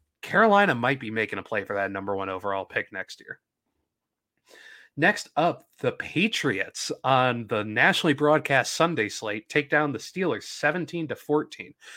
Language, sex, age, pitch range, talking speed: English, male, 30-49, 115-170 Hz, 155 wpm